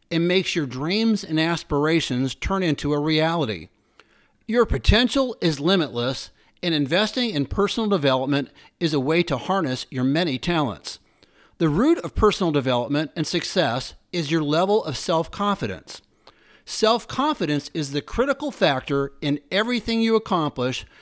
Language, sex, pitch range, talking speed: English, male, 145-200 Hz, 135 wpm